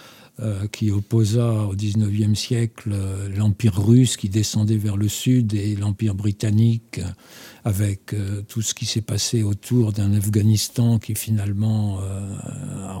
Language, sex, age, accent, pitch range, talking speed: French, male, 60-79, French, 105-125 Hz, 125 wpm